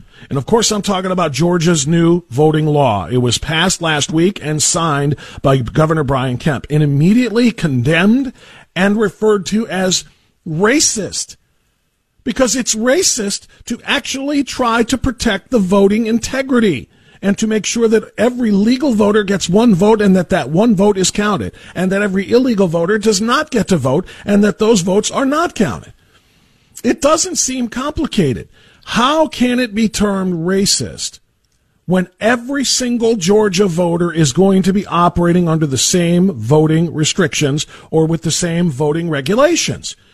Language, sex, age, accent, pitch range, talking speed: English, male, 50-69, American, 165-225 Hz, 160 wpm